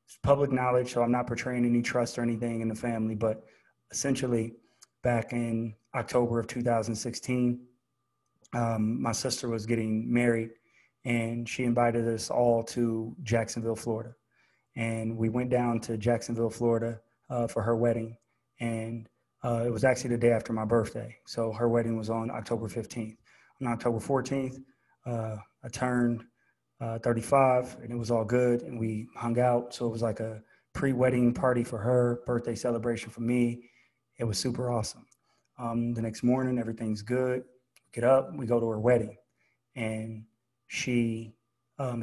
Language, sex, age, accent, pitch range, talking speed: English, male, 20-39, American, 115-125 Hz, 160 wpm